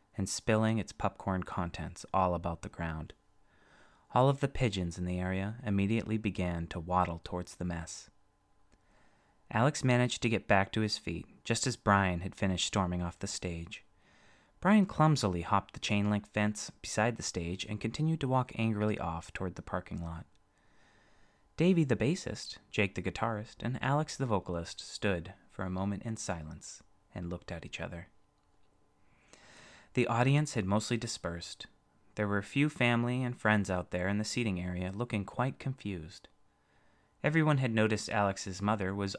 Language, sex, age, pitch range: English, male, 30-49, 90-115 Hz